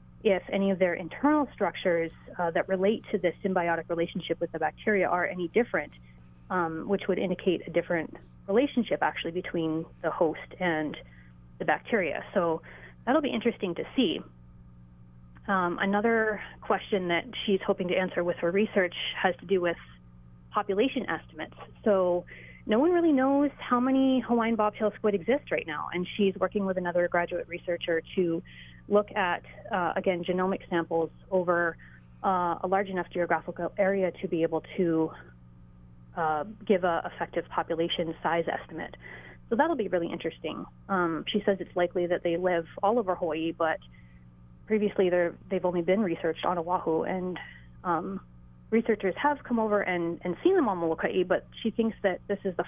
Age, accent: 30-49, American